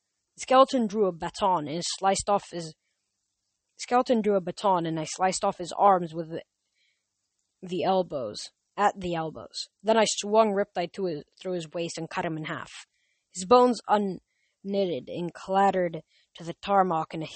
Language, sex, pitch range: English, female, 170-220 Hz